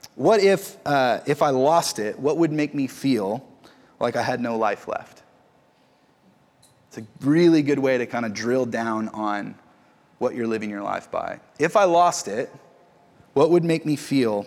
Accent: American